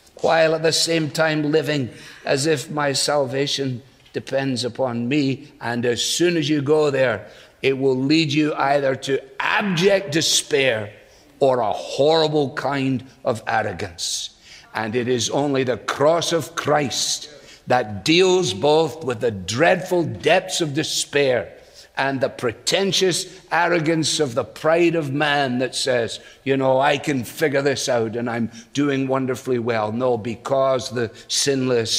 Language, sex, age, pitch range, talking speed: English, male, 60-79, 125-165 Hz, 145 wpm